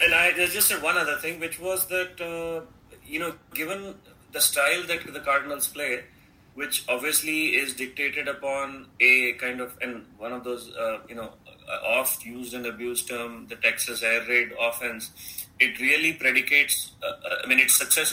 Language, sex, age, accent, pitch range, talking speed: English, male, 30-49, Indian, 120-135 Hz, 180 wpm